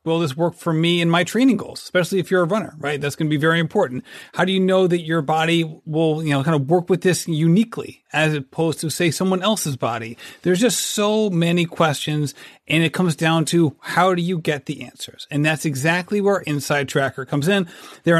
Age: 30-49